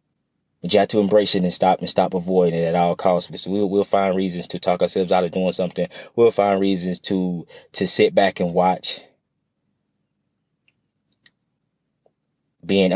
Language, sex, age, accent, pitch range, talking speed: English, male, 20-39, American, 90-105 Hz, 170 wpm